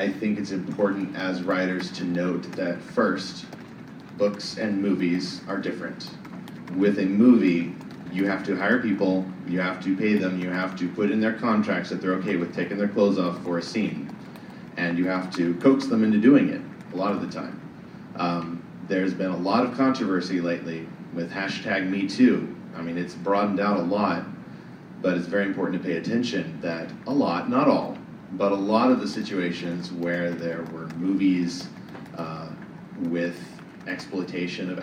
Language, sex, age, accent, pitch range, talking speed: English, male, 30-49, American, 90-100 Hz, 180 wpm